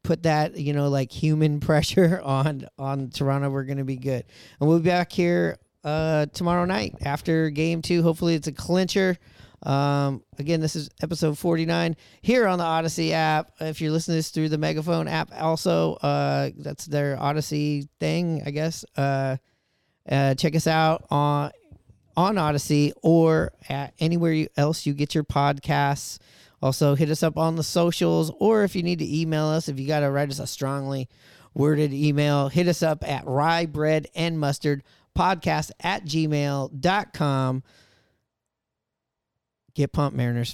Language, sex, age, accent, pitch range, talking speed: English, male, 40-59, American, 140-165 Hz, 165 wpm